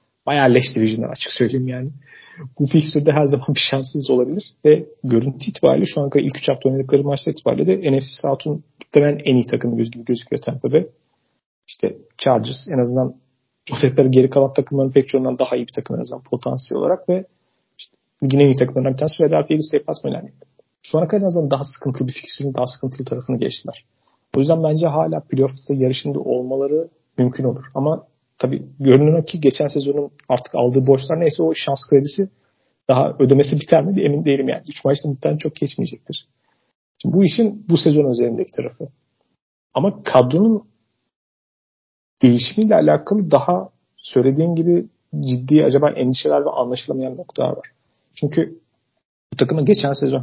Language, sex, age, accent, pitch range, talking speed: Turkish, male, 40-59, native, 130-155 Hz, 160 wpm